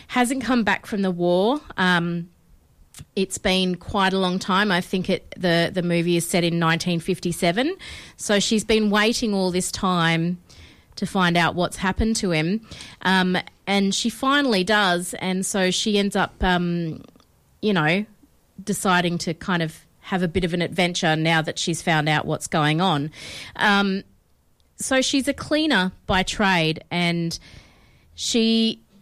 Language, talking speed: English, 155 wpm